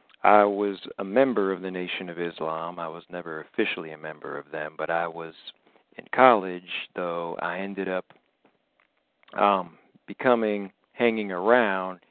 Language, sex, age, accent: English, male, 40-59, American